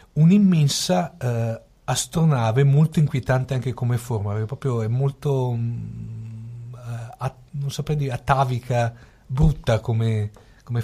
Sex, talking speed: male, 120 wpm